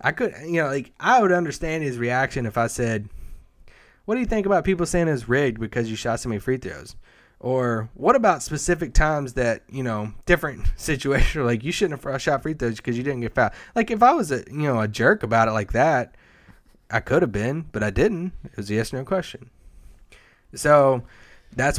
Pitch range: 105-130 Hz